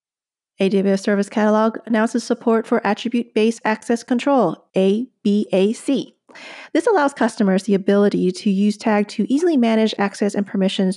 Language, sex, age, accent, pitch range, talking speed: English, female, 40-59, American, 200-245 Hz, 130 wpm